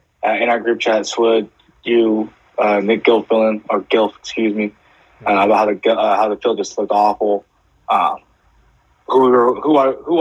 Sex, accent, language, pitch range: male, American, English, 100-115 Hz